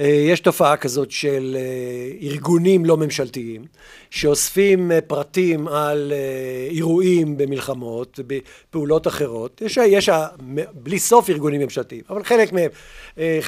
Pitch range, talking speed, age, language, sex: 150-210 Hz, 100 wpm, 50-69, Hebrew, male